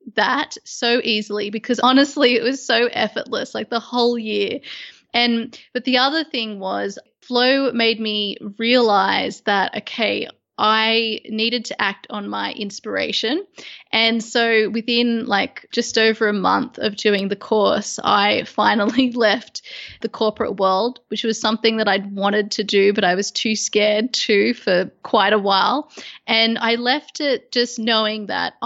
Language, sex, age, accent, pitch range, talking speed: English, female, 20-39, Australian, 215-245 Hz, 155 wpm